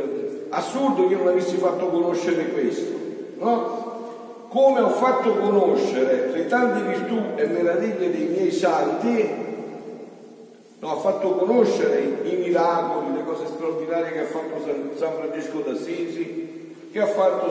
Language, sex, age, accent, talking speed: Italian, male, 50-69, native, 130 wpm